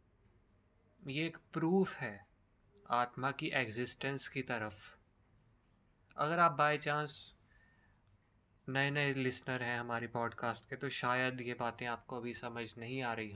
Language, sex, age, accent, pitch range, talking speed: Hindi, male, 20-39, native, 105-135 Hz, 135 wpm